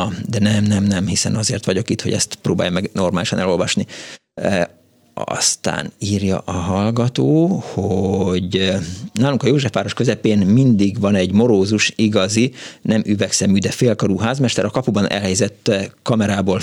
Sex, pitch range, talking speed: male, 95-120 Hz, 135 wpm